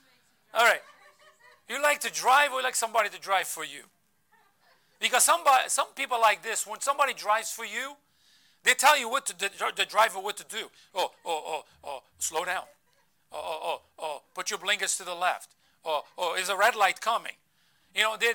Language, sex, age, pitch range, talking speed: English, male, 40-59, 190-260 Hz, 205 wpm